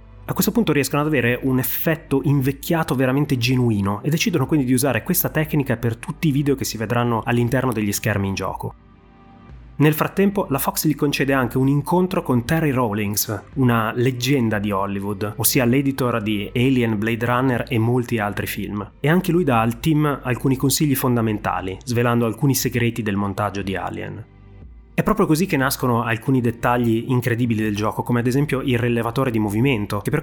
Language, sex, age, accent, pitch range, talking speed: Italian, male, 30-49, native, 110-140 Hz, 180 wpm